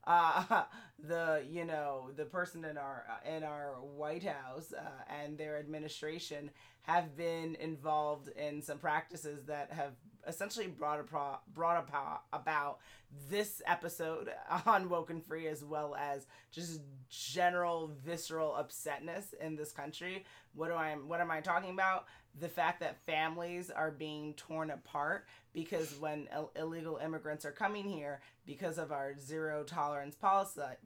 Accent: American